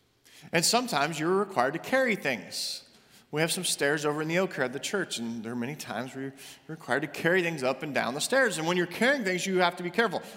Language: English